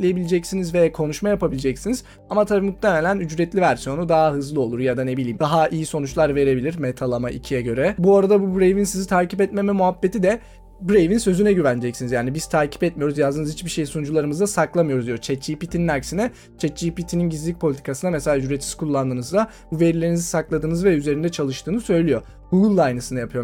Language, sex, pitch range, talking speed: Turkish, male, 140-185 Hz, 160 wpm